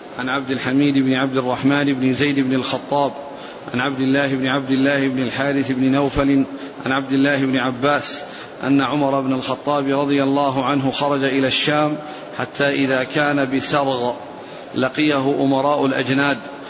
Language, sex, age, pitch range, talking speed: Arabic, male, 40-59, 135-145 Hz, 150 wpm